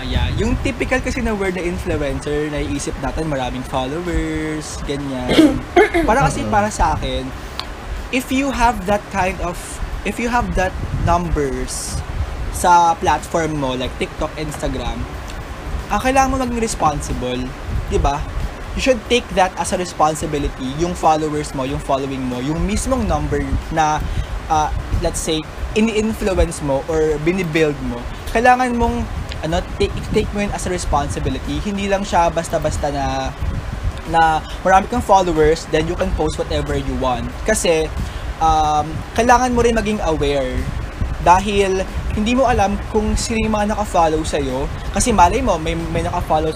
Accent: Filipino